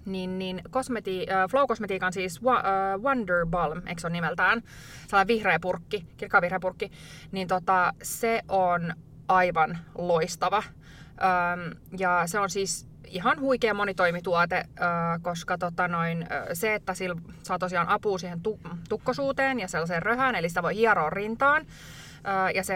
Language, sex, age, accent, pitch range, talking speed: Finnish, female, 20-39, native, 175-210 Hz, 140 wpm